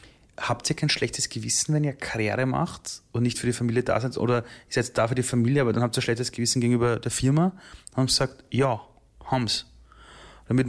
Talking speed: 215 wpm